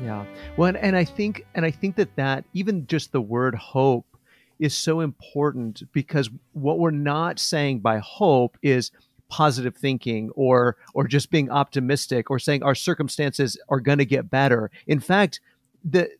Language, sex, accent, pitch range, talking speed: English, male, American, 135-165 Hz, 165 wpm